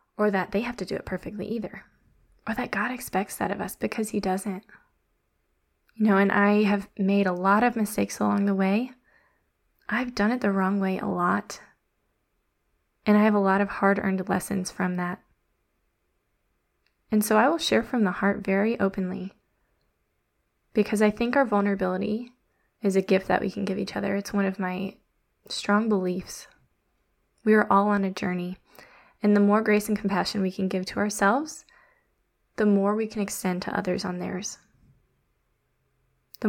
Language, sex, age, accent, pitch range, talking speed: English, female, 20-39, American, 190-210 Hz, 175 wpm